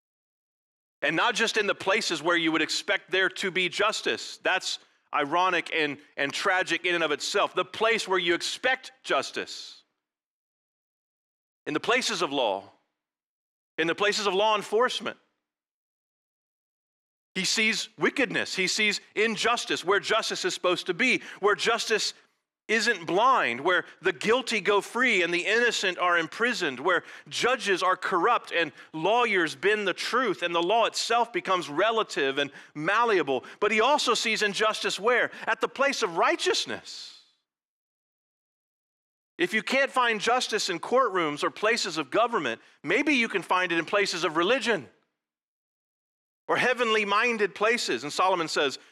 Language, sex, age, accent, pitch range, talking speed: English, male, 40-59, American, 175-245 Hz, 150 wpm